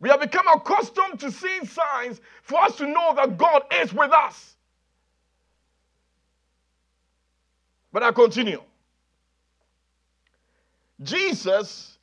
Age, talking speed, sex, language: 50-69, 100 wpm, male, English